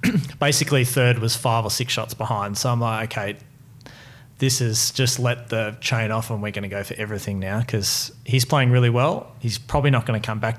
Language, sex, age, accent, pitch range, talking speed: English, male, 30-49, Australian, 115-135 Hz, 210 wpm